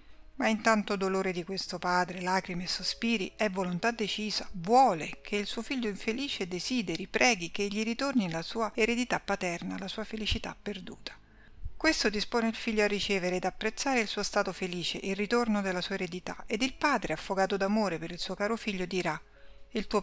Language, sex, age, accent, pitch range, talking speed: Italian, female, 50-69, native, 185-220 Hz, 185 wpm